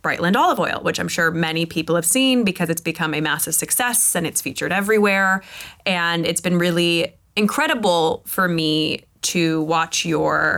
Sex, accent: female, American